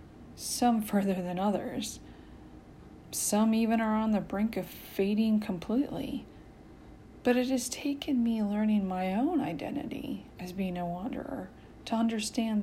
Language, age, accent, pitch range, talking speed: English, 30-49, American, 195-250 Hz, 135 wpm